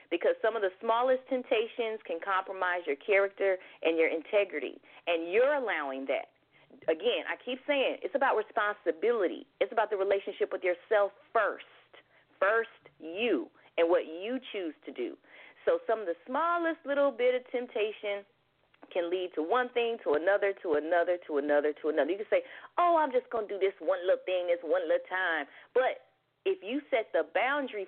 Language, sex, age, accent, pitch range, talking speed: English, female, 30-49, American, 190-290 Hz, 180 wpm